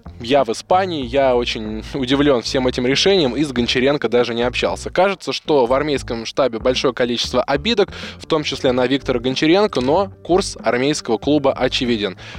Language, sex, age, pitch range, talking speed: Russian, male, 10-29, 115-140 Hz, 165 wpm